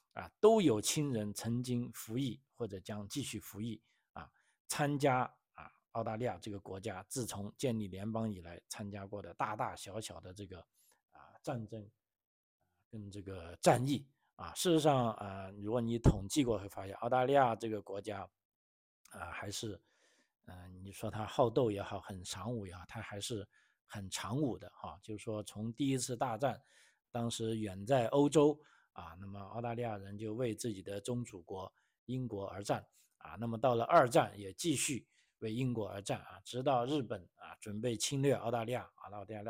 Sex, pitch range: male, 100-125 Hz